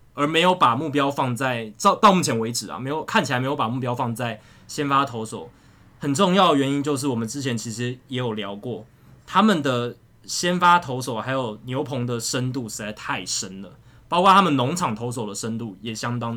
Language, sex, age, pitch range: Chinese, male, 20-39, 115-150 Hz